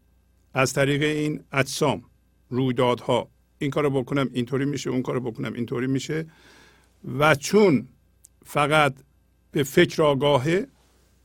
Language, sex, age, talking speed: Persian, male, 50-69, 110 wpm